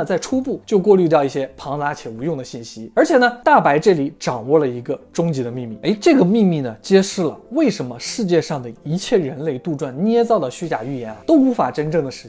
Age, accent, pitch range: 20-39, native, 145-240 Hz